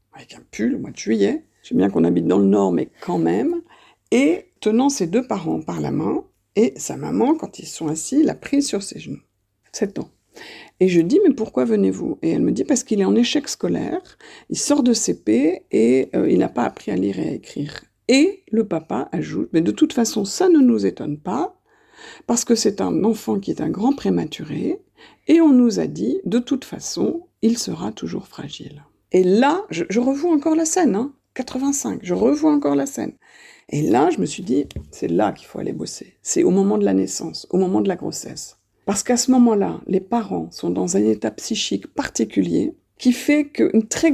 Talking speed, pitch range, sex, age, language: 220 wpm, 195-310 Hz, female, 50-69, French